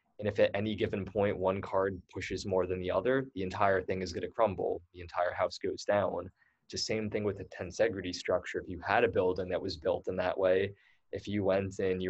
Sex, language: male, French